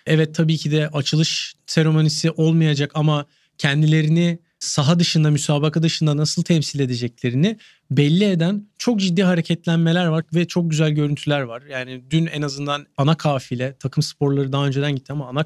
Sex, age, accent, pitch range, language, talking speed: male, 40-59, native, 150-175 Hz, Turkish, 155 wpm